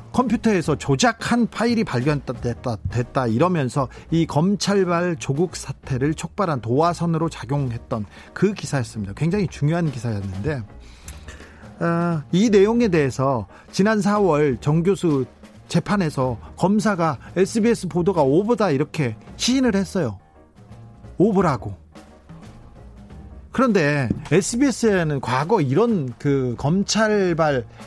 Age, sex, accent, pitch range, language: 40-59, male, native, 135-205 Hz, Korean